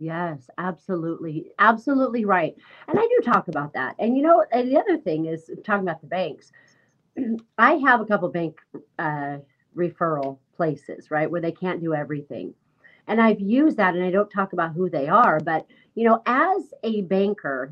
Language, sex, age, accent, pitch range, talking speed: English, female, 40-59, American, 170-225 Hz, 185 wpm